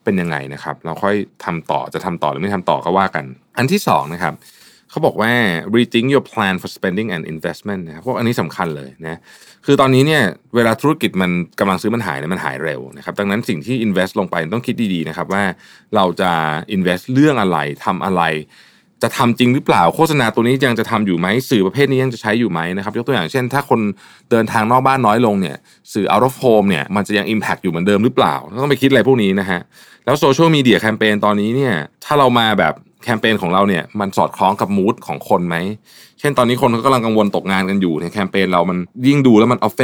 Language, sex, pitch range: Thai, male, 90-125 Hz